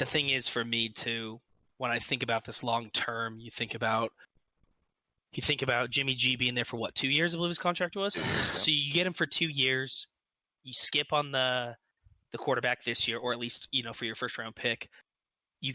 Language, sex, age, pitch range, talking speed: English, male, 20-39, 115-135 Hz, 220 wpm